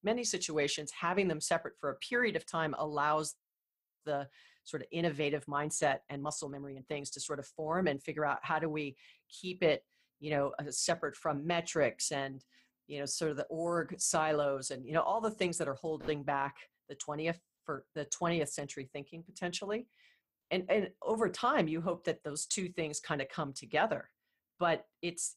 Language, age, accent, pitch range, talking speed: English, 40-59, American, 145-170 Hz, 190 wpm